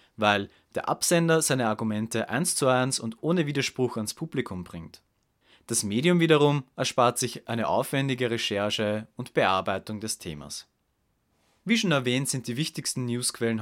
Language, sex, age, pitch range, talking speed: German, male, 30-49, 105-140 Hz, 145 wpm